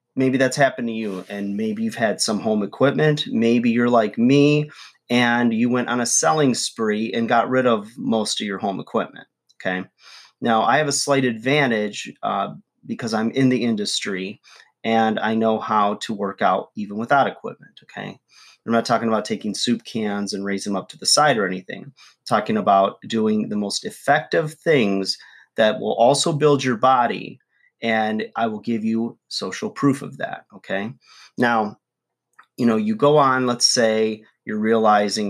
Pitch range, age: 105-130 Hz, 30-49